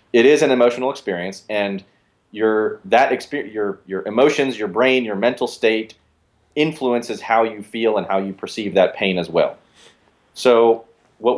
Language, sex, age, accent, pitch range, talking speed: English, male, 30-49, American, 100-125 Hz, 165 wpm